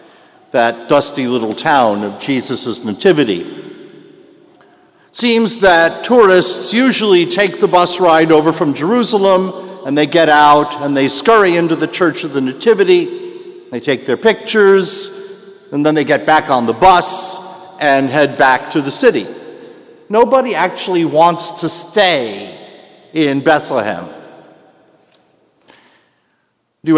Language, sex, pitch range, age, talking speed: English, male, 150-215 Hz, 60-79, 125 wpm